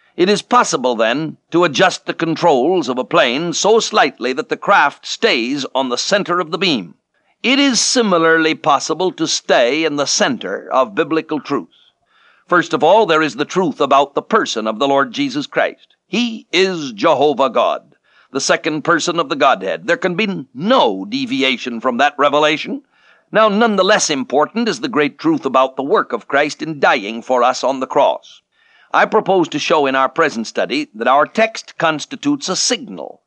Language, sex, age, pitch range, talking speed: English, male, 60-79, 140-205 Hz, 180 wpm